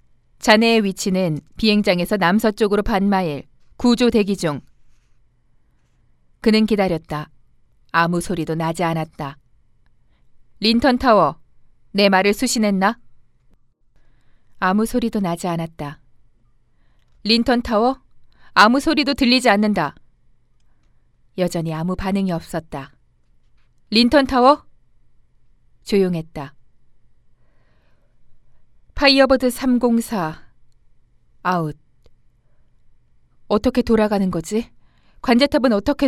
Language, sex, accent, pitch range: Korean, female, native, 160-230 Hz